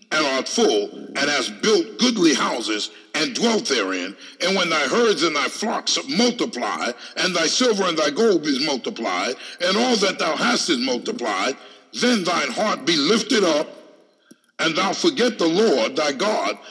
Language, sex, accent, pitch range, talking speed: English, male, American, 195-270 Hz, 170 wpm